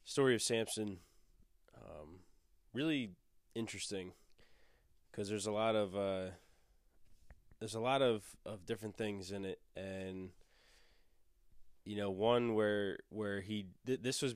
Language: English